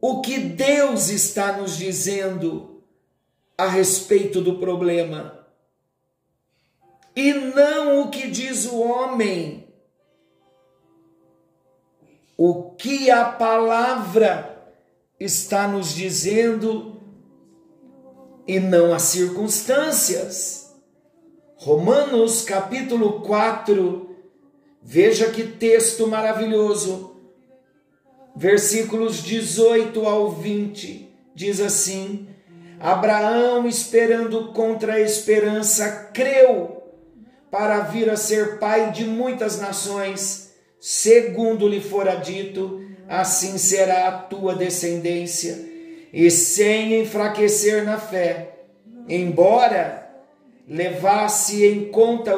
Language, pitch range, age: Portuguese, 185-230 Hz, 50-69